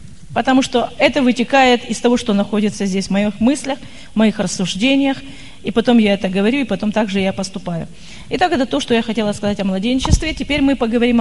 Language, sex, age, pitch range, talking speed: Russian, female, 30-49, 205-275 Hz, 200 wpm